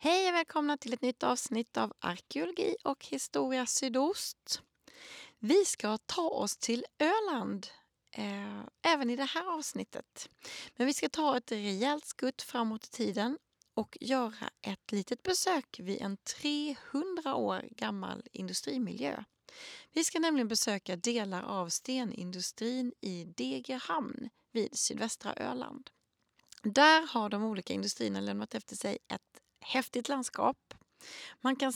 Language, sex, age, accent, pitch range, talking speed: Swedish, female, 30-49, native, 215-290 Hz, 130 wpm